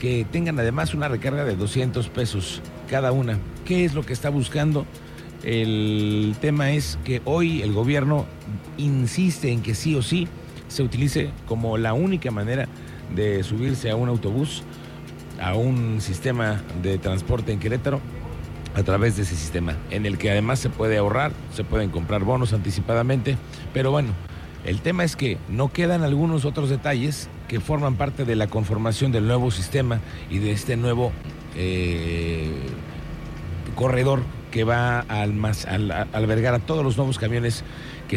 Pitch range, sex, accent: 105-135 Hz, male, Mexican